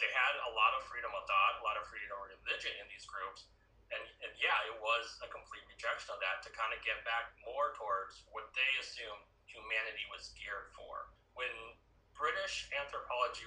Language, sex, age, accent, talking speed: English, male, 30-49, American, 195 wpm